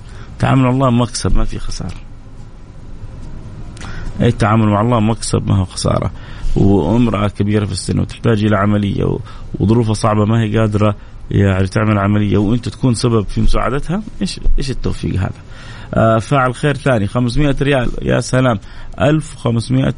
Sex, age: male, 30-49